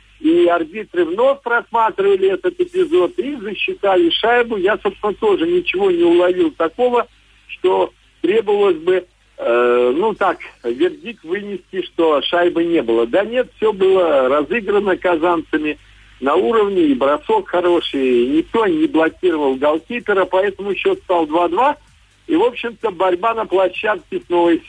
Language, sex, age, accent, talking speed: Russian, male, 60-79, native, 135 wpm